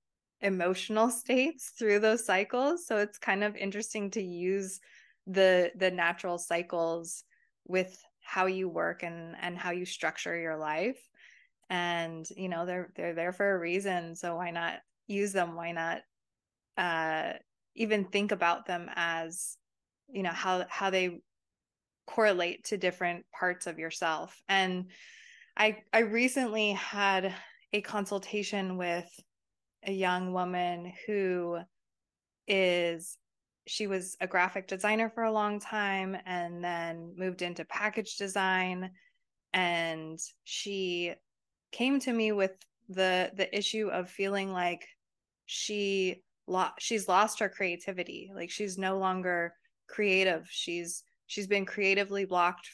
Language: English